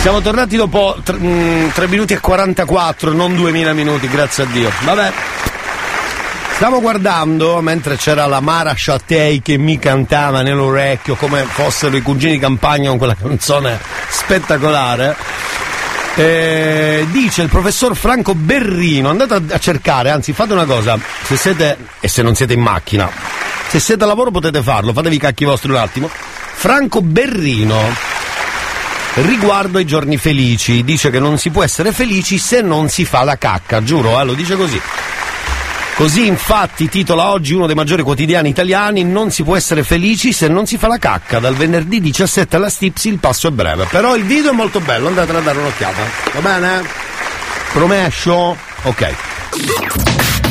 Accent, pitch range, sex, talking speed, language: native, 140-190 Hz, male, 160 wpm, Italian